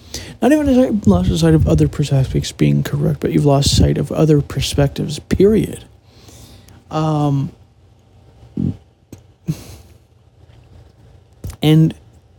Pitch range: 110-155 Hz